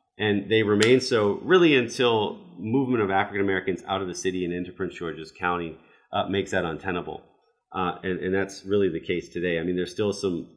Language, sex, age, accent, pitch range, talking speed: English, male, 30-49, American, 90-105 Hz, 200 wpm